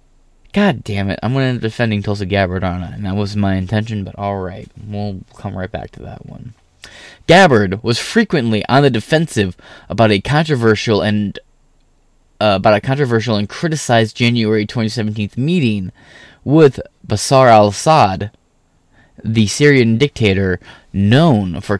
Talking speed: 150 wpm